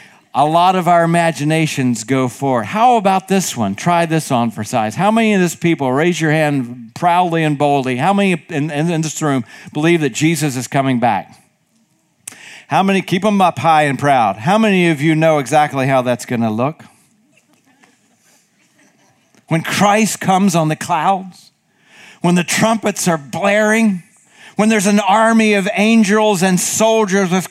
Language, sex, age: English, male, 50-69